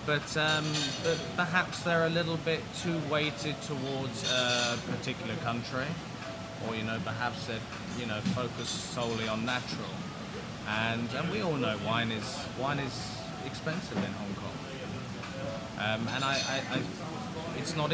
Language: English